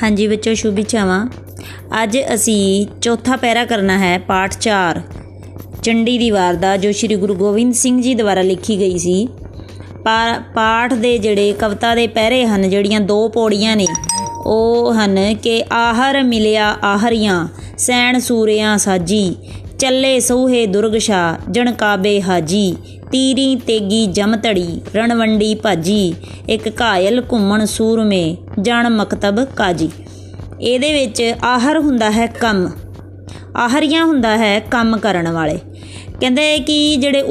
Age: 20-39